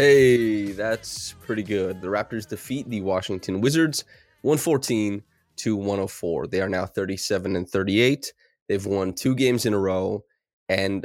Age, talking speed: 20-39, 145 wpm